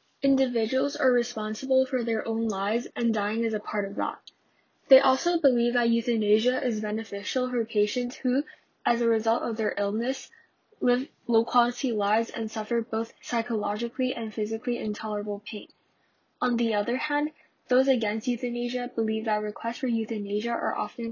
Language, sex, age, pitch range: English, female, 10-29, 215-255 Hz